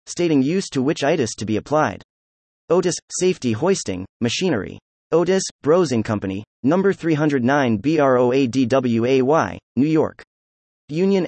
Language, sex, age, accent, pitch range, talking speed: English, male, 30-49, American, 105-165 Hz, 105 wpm